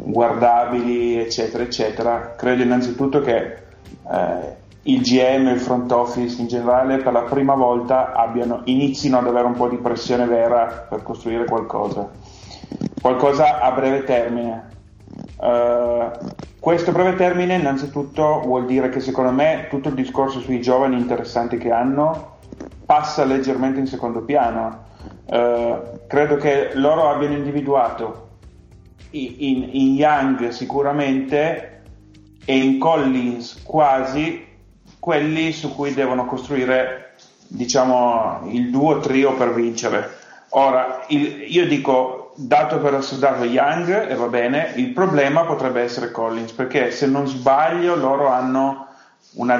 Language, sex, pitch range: Italian, male, 120-140 Hz